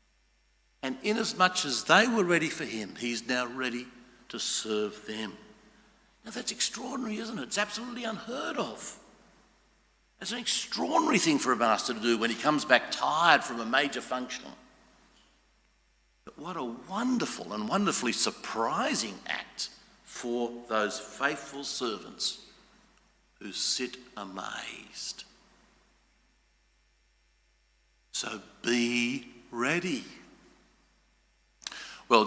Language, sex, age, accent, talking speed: English, male, 60-79, Australian, 110 wpm